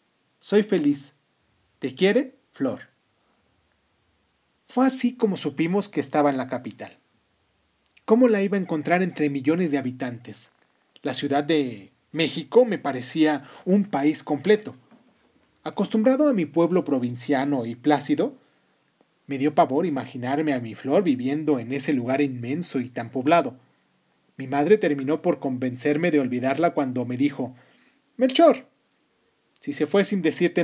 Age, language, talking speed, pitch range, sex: 40-59, Spanish, 135 wpm, 135-195 Hz, male